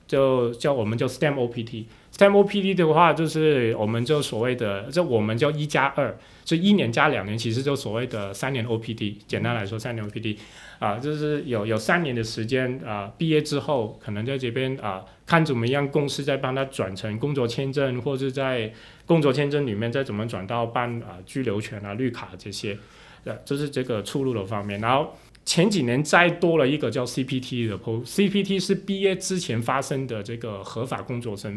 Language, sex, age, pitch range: Chinese, male, 20-39, 110-140 Hz